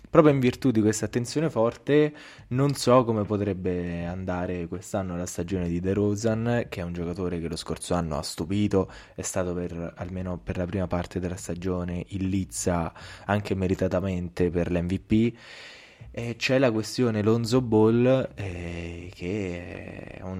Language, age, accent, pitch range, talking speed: Italian, 20-39, native, 90-110 Hz, 150 wpm